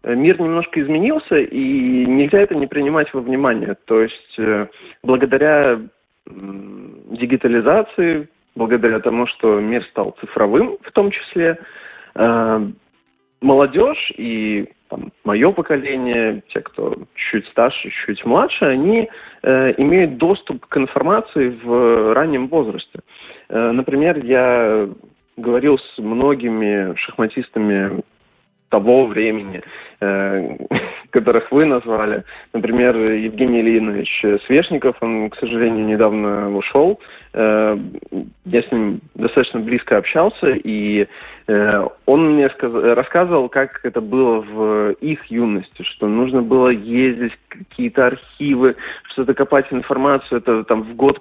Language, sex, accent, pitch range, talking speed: Russian, male, native, 110-140 Hz, 110 wpm